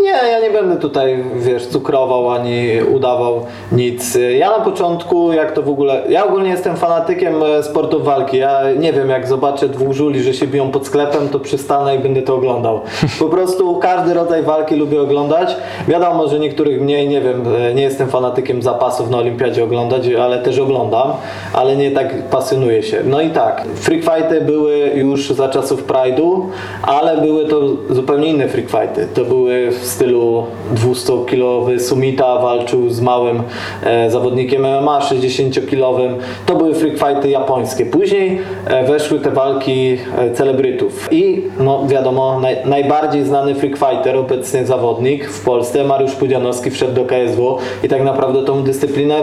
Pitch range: 130-155 Hz